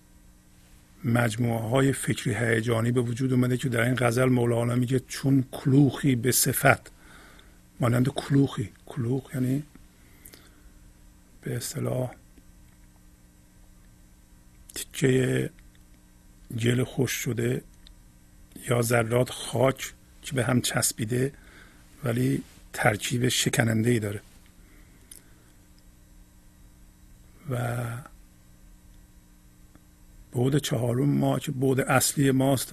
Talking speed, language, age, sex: 85 wpm, Persian, 50-69, male